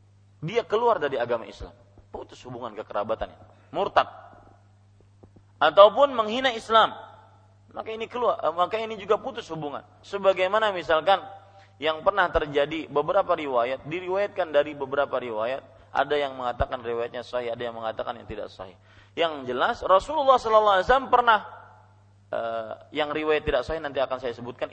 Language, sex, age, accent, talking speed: English, male, 30-49, Indonesian, 140 wpm